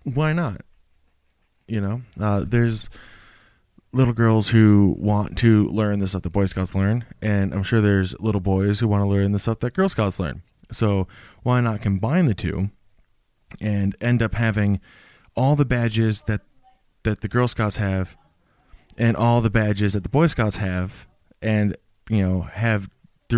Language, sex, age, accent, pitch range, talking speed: English, male, 20-39, American, 100-120 Hz, 170 wpm